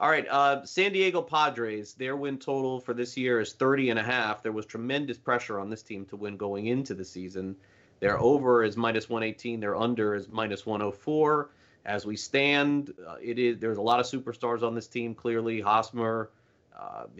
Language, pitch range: English, 105-125 Hz